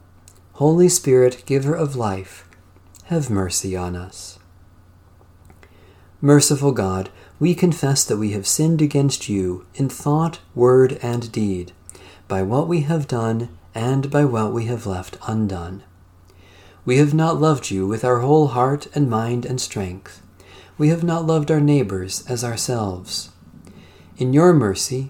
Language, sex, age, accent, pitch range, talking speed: English, male, 40-59, American, 95-145 Hz, 145 wpm